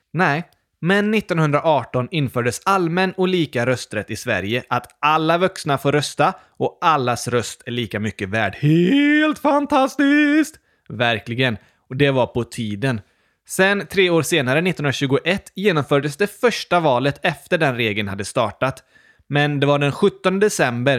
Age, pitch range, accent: 20-39, 120-180 Hz, native